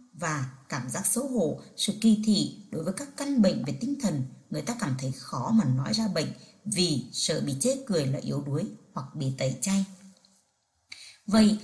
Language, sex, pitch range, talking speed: Vietnamese, female, 165-240 Hz, 195 wpm